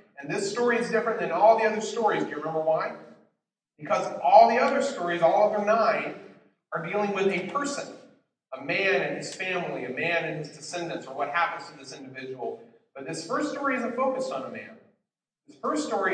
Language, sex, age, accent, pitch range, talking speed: English, male, 40-59, American, 170-215 Hz, 210 wpm